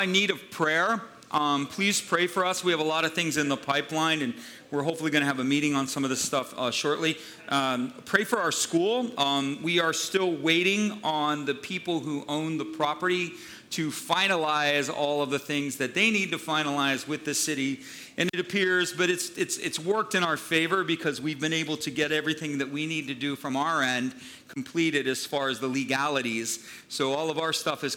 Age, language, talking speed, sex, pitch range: 40-59, English, 215 wpm, male, 140-170 Hz